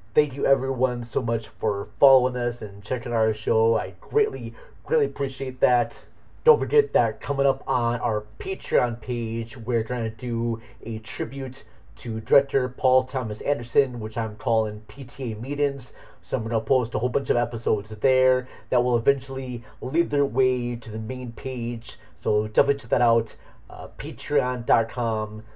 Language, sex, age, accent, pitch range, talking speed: English, male, 30-49, American, 115-140 Hz, 165 wpm